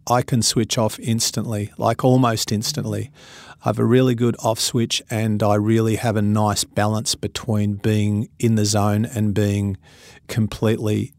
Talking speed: 160 wpm